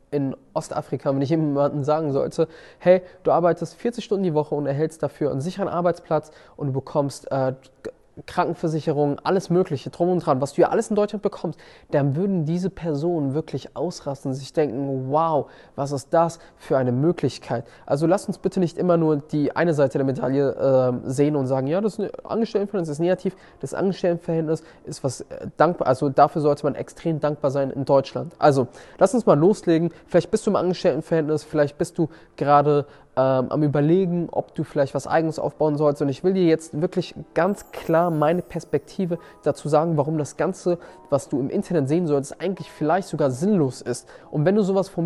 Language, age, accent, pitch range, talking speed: German, 20-39, German, 145-180 Hz, 190 wpm